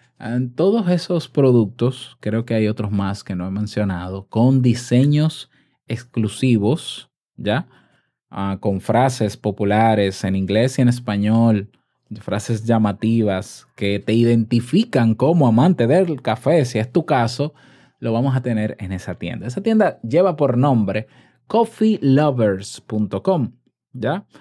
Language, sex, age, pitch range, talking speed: Spanish, male, 20-39, 110-145 Hz, 125 wpm